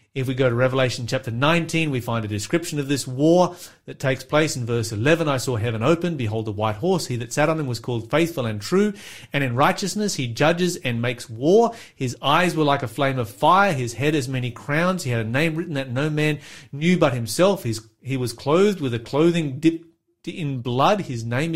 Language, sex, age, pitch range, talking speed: English, male, 30-49, 125-165 Hz, 225 wpm